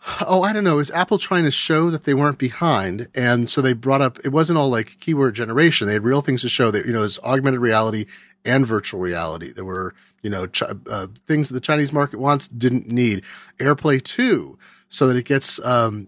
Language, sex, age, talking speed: English, male, 30-49, 225 wpm